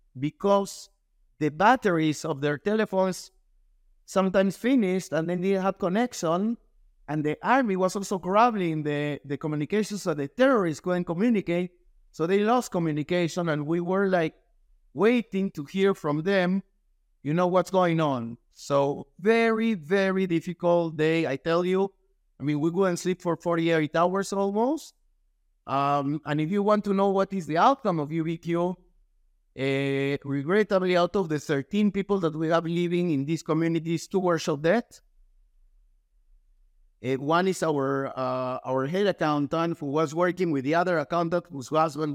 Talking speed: 160 wpm